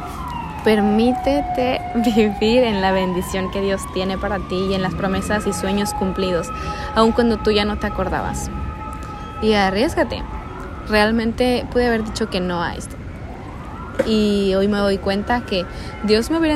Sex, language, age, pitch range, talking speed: female, Spanish, 20-39, 145-210 Hz, 155 wpm